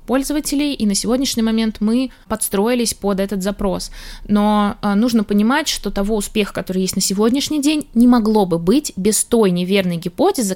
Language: Russian